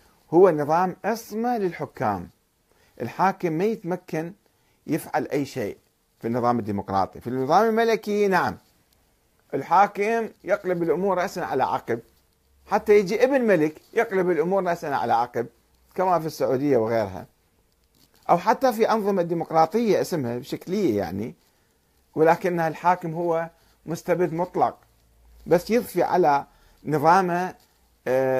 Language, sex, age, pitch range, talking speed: Arabic, male, 50-69, 120-190 Hz, 110 wpm